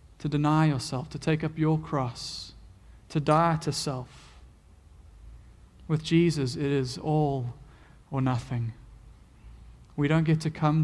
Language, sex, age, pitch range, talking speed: English, male, 30-49, 130-170 Hz, 135 wpm